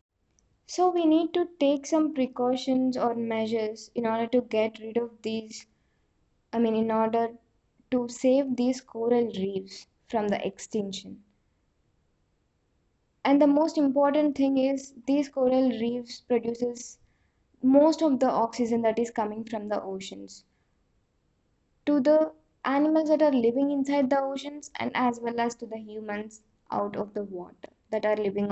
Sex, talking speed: female, 150 wpm